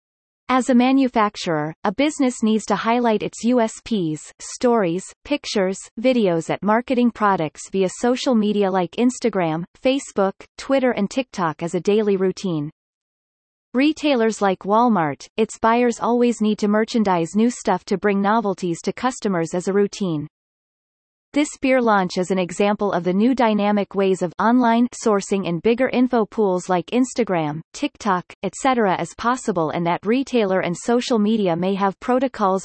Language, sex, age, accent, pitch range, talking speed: English, female, 30-49, American, 190-240 Hz, 150 wpm